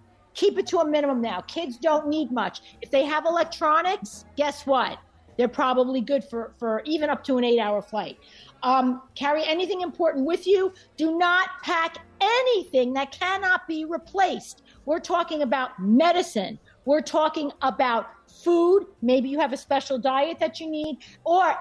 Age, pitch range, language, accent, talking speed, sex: 50-69, 245-335 Hz, English, American, 165 wpm, female